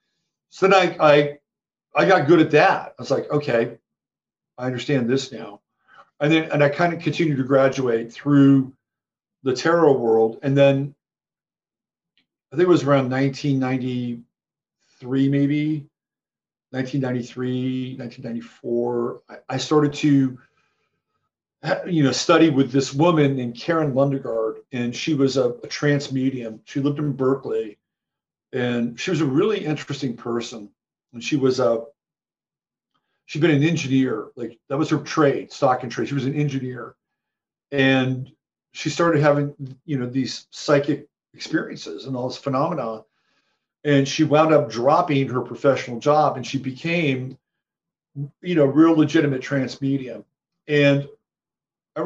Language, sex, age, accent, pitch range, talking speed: English, male, 50-69, American, 130-150 Hz, 140 wpm